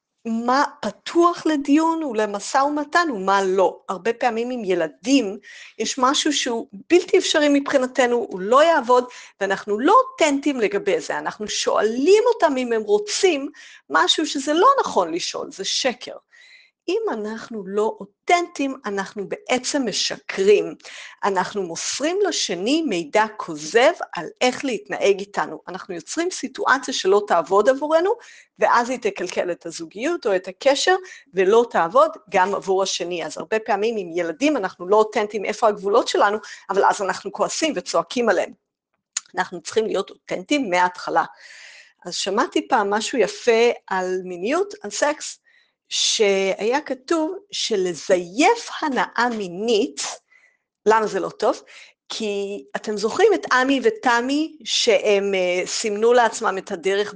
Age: 50-69